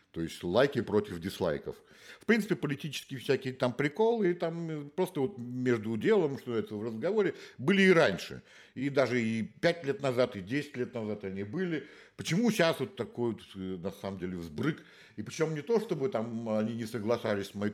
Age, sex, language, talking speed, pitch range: 60-79, male, Russian, 190 wpm, 110-175 Hz